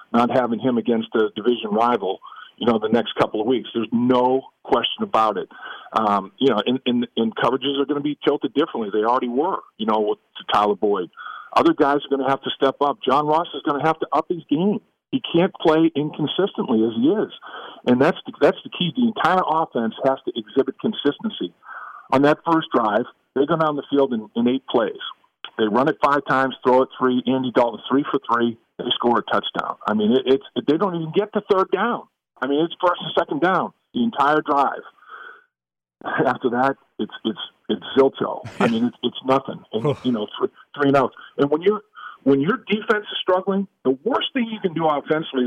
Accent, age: American, 50-69